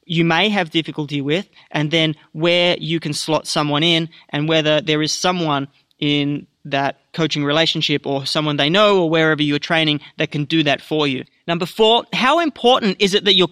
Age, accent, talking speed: 30-49, Australian, 195 wpm